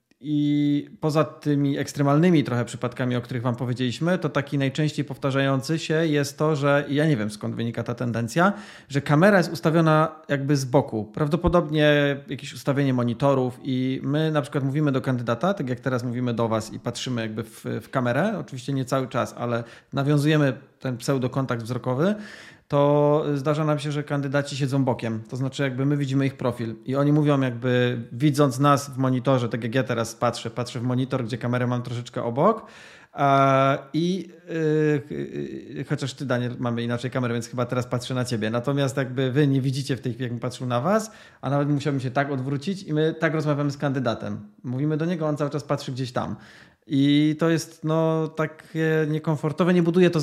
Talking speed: 185 wpm